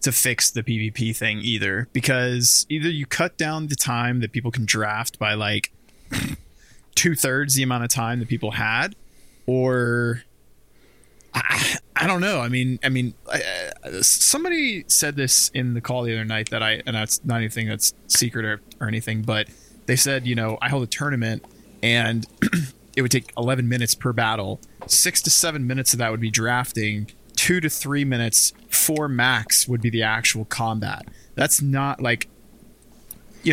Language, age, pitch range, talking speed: English, 20-39, 110-135 Hz, 175 wpm